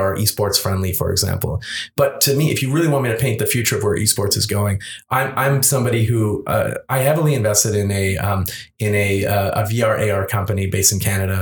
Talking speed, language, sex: 225 wpm, English, male